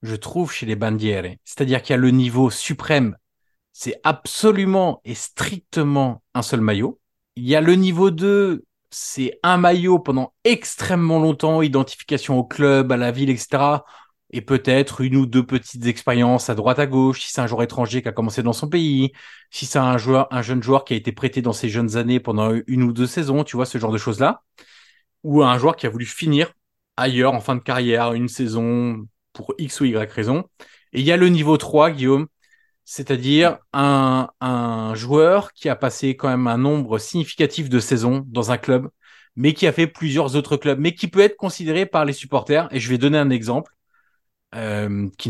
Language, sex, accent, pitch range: French, male, French, 120-150 Hz